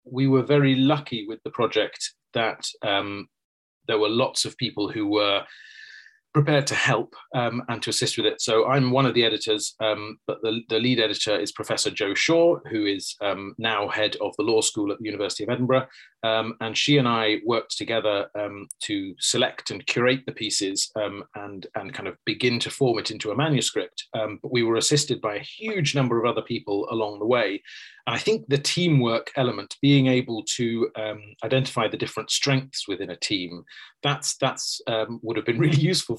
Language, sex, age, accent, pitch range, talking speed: English, male, 30-49, British, 110-135 Hz, 200 wpm